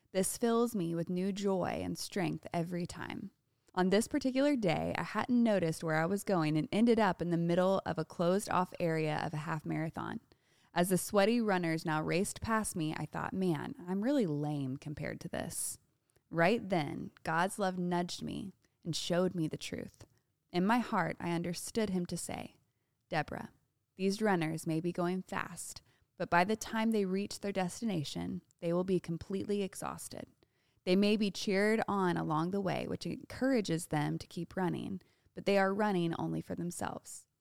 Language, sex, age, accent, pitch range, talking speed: English, female, 20-39, American, 160-200 Hz, 180 wpm